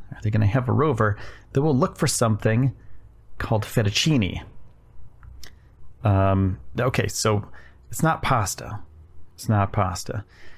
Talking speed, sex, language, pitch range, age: 130 wpm, male, English, 105-125 Hz, 30-49